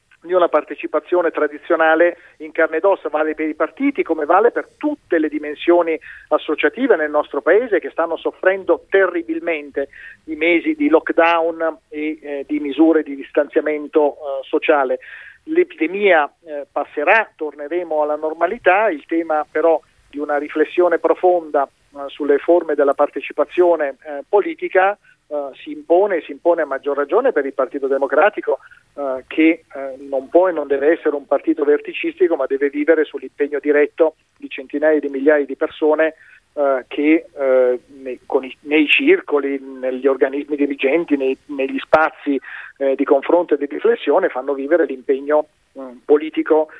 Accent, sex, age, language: native, male, 40-59, Italian